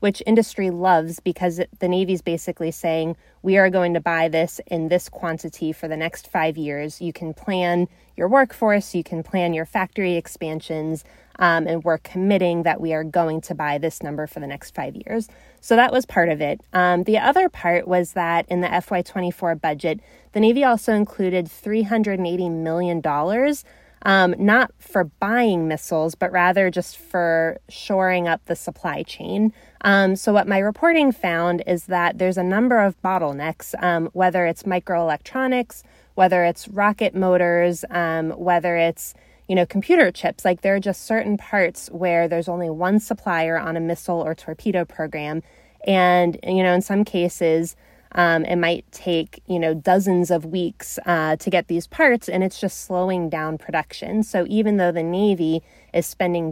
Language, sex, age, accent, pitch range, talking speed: English, female, 20-39, American, 165-195 Hz, 175 wpm